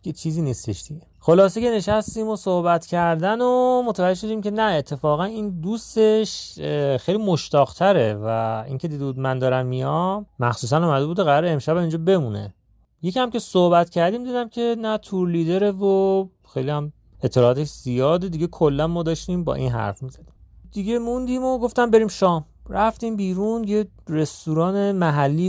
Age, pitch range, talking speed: 30-49, 130-190 Hz, 155 wpm